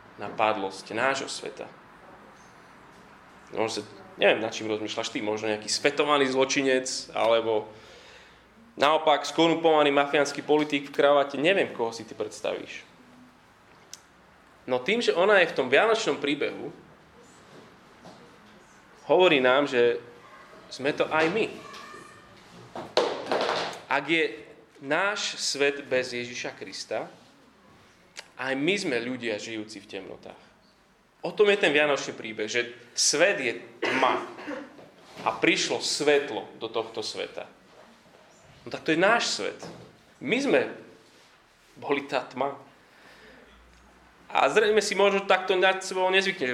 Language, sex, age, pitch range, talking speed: Slovak, male, 20-39, 120-160 Hz, 115 wpm